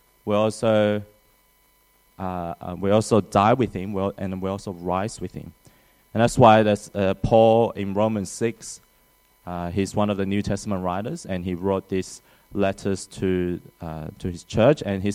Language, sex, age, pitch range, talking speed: English, male, 20-39, 95-110 Hz, 170 wpm